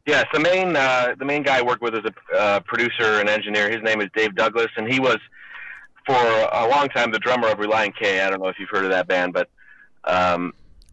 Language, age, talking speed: English, 30-49, 240 wpm